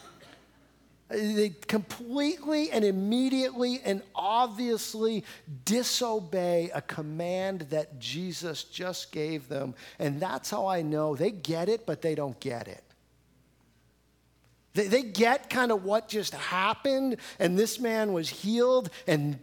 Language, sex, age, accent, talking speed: English, male, 50-69, American, 125 wpm